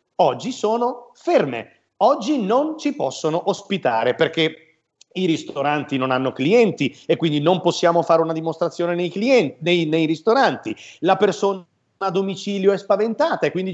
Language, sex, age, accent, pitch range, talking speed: Italian, male, 40-59, native, 155-205 Hz, 150 wpm